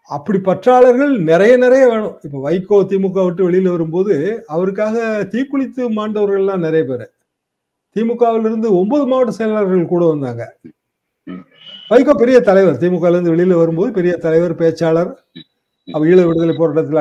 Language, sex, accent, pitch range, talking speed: Tamil, male, native, 160-210 Hz, 125 wpm